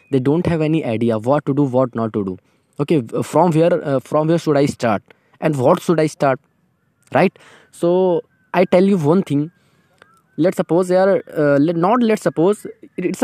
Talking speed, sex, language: 185 wpm, male, Hindi